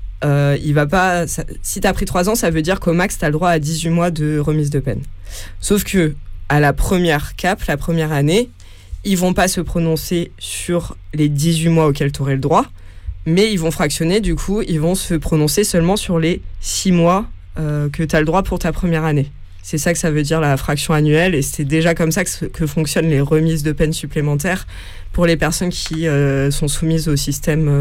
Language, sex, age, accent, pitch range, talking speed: French, female, 20-39, French, 140-165 Hz, 230 wpm